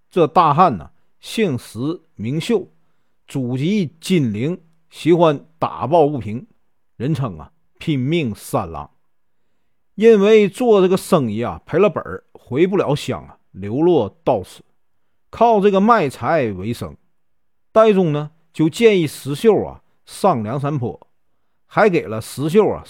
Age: 50-69